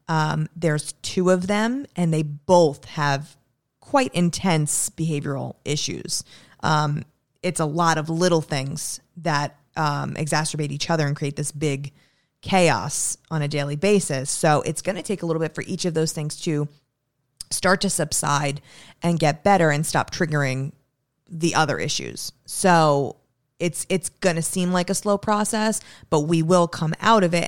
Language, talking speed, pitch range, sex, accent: English, 170 wpm, 150-175 Hz, female, American